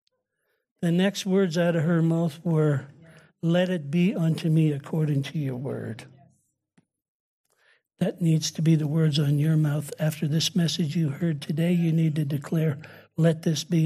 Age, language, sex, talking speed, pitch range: 60-79, English, male, 170 wpm, 155-175 Hz